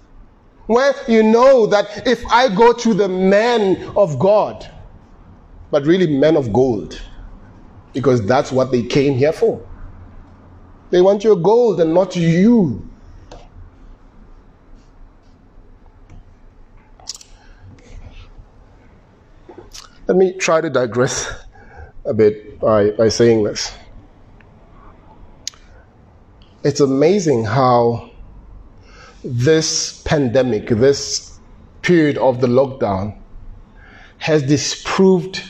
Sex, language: male, English